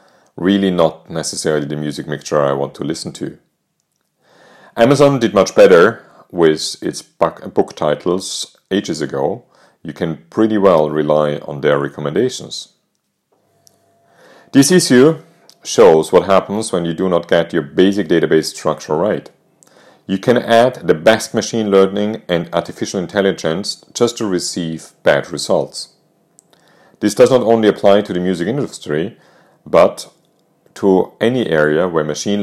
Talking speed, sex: 135 wpm, male